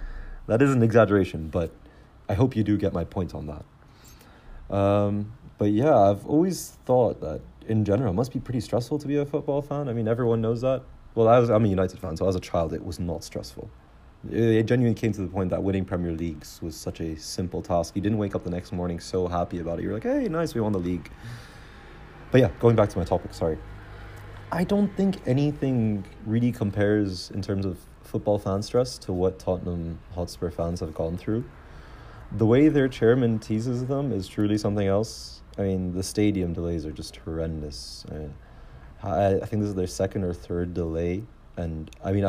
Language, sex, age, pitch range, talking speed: English, male, 30-49, 85-110 Hz, 205 wpm